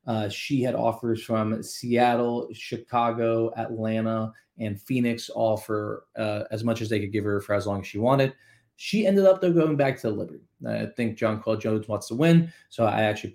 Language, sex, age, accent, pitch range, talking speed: English, male, 20-39, American, 105-135 Hz, 200 wpm